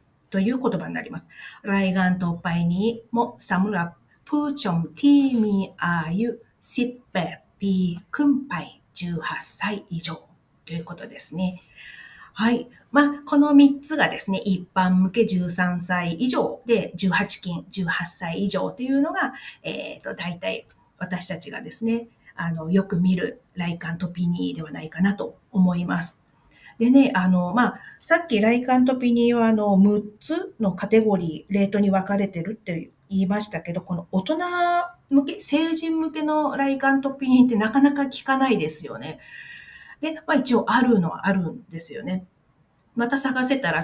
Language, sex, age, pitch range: Japanese, female, 40-59, 180-255 Hz